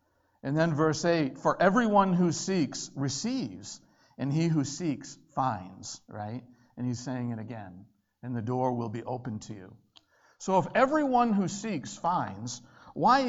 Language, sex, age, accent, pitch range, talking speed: English, male, 50-69, American, 135-185 Hz, 160 wpm